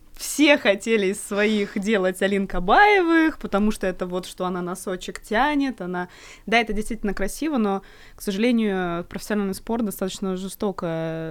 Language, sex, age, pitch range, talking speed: Russian, female, 20-39, 170-210 Hz, 140 wpm